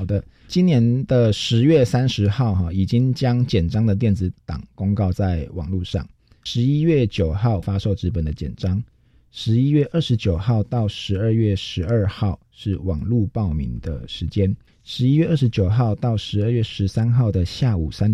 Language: Chinese